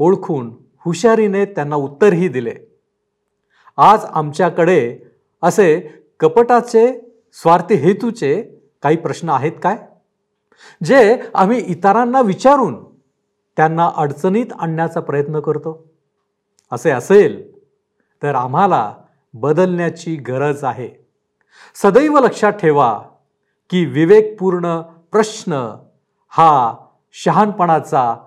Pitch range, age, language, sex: 140-200 Hz, 50-69, Marathi, male